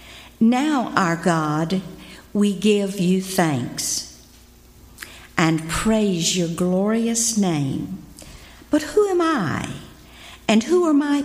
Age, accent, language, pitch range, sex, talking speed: 50-69, American, English, 170-250 Hz, female, 105 wpm